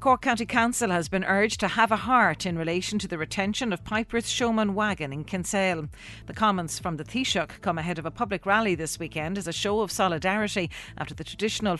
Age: 40-59